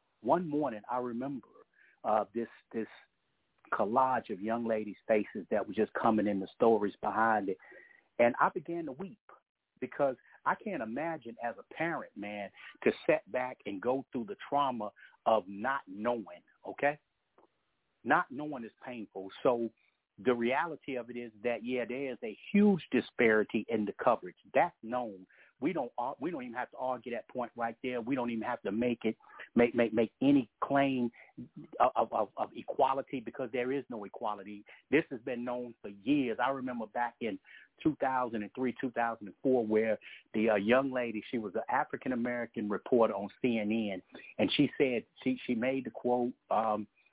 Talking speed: 170 wpm